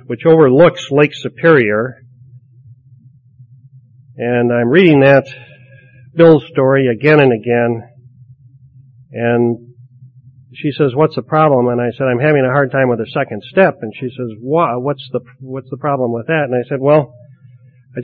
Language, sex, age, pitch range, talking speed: English, male, 50-69, 125-155 Hz, 155 wpm